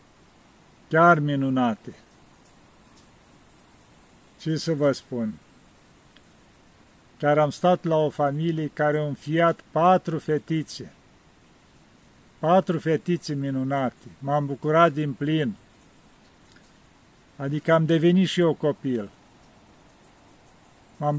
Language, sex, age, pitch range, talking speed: Romanian, male, 50-69, 145-175 Hz, 90 wpm